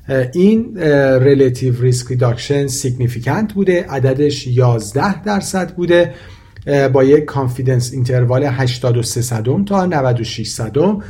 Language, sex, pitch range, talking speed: Persian, male, 120-150 Hz, 90 wpm